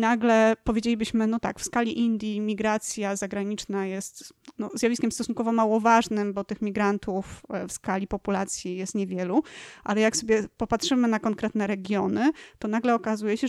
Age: 30-49